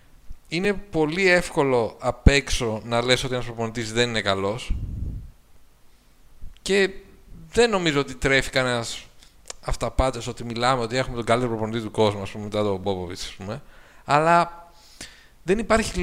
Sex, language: male, Greek